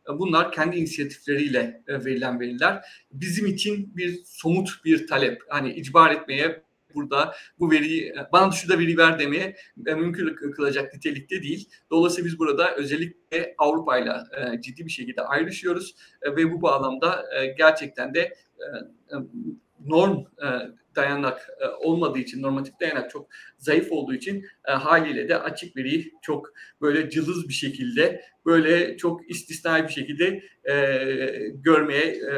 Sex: male